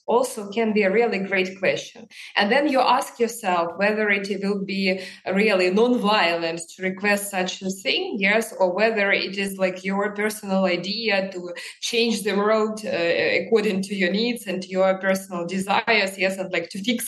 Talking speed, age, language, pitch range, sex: 180 wpm, 20-39, Russian, 185-220 Hz, female